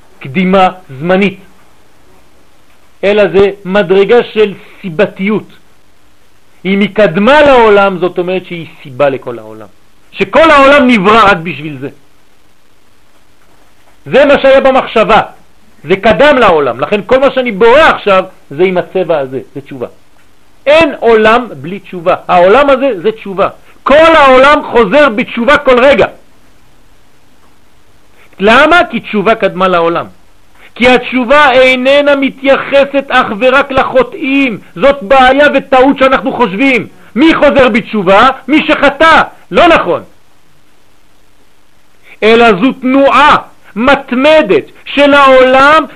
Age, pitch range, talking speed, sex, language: 50-69, 185-270 Hz, 100 wpm, male, French